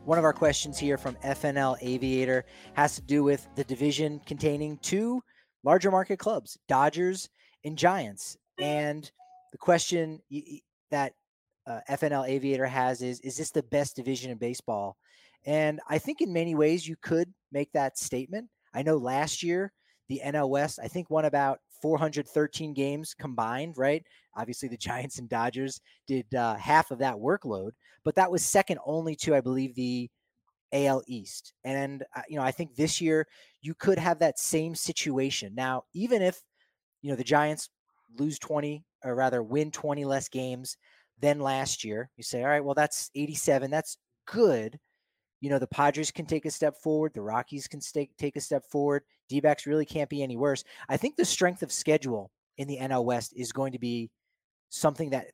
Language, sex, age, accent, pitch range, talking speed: English, male, 30-49, American, 130-155 Hz, 180 wpm